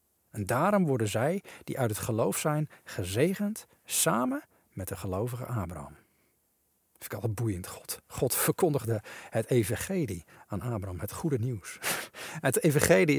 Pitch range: 110-155 Hz